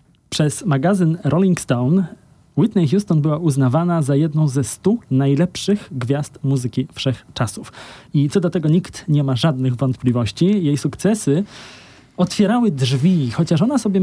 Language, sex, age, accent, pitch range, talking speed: Polish, male, 20-39, native, 130-170 Hz, 135 wpm